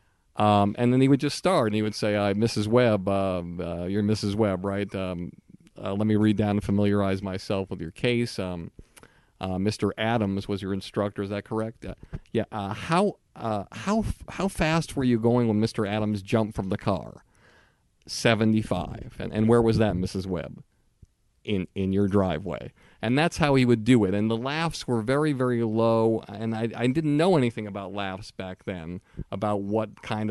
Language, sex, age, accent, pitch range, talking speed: English, male, 50-69, American, 100-125 Hz, 195 wpm